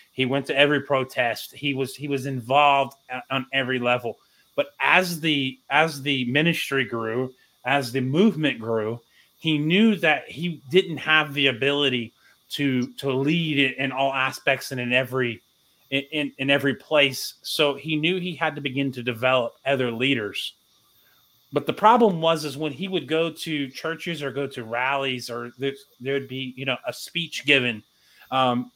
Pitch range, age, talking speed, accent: 130-155 Hz, 30-49, 175 wpm, American